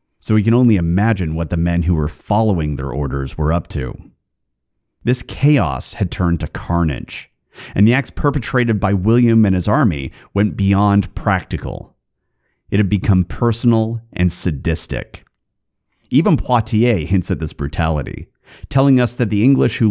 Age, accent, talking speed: 30-49, American, 155 wpm